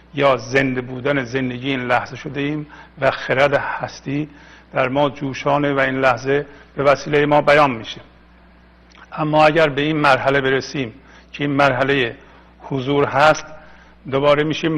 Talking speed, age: 140 wpm, 50-69